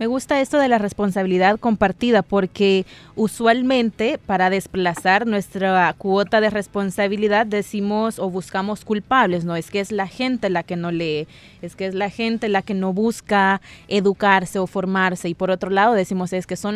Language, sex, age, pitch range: Spanish, female, 20-39, 190-225 Hz